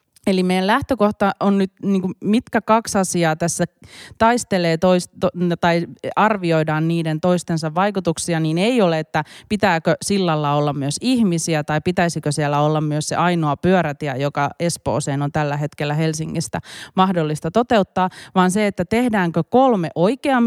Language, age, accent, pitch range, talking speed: Finnish, 30-49, native, 160-195 Hz, 140 wpm